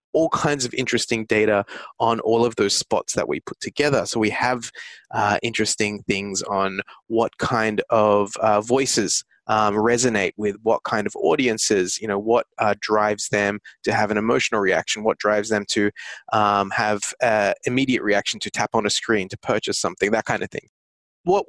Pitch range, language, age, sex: 105-125 Hz, English, 20-39, male